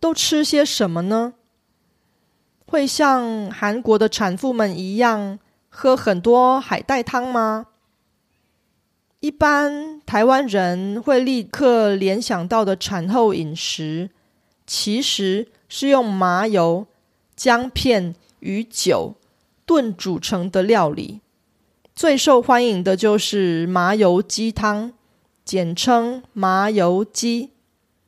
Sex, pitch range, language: female, 190-255 Hz, Korean